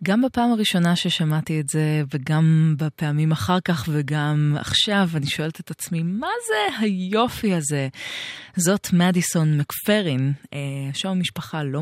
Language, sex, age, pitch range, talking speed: Hebrew, female, 20-39, 145-175 Hz, 130 wpm